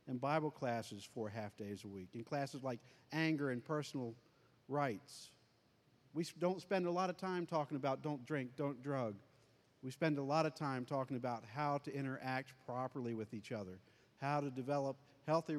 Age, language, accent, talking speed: 50-69, English, American, 180 wpm